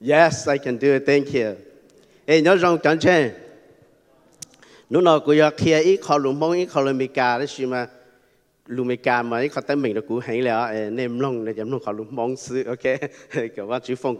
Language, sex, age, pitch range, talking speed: English, male, 50-69, 115-150 Hz, 170 wpm